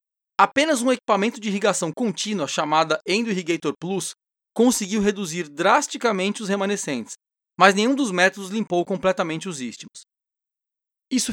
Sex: male